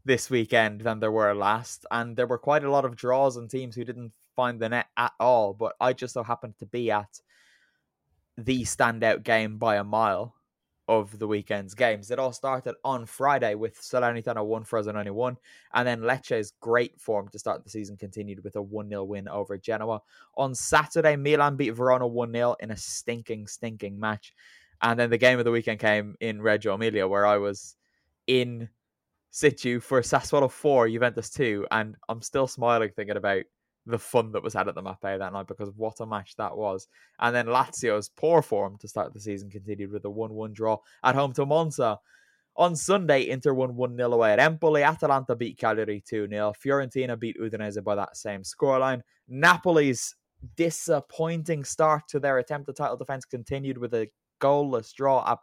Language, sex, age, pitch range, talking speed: English, male, 10-29, 105-130 Hz, 195 wpm